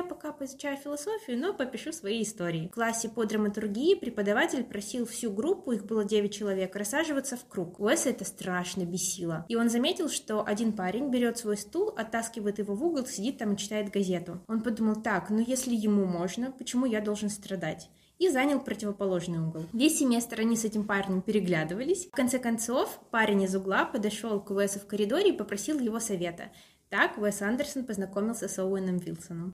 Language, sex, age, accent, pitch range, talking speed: Russian, female, 20-39, native, 200-255 Hz, 180 wpm